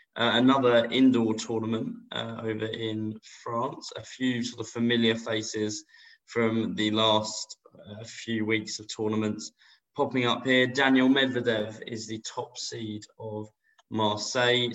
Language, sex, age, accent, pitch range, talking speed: English, male, 20-39, British, 110-120 Hz, 135 wpm